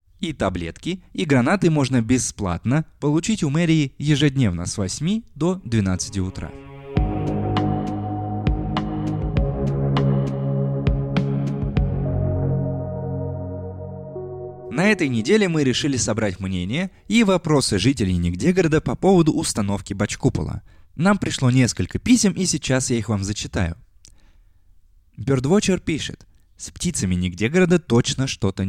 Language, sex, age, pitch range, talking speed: Russian, male, 20-39, 95-150 Hz, 100 wpm